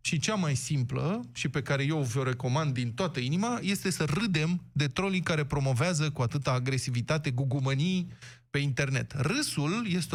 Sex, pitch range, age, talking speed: male, 125-170 Hz, 20-39, 165 wpm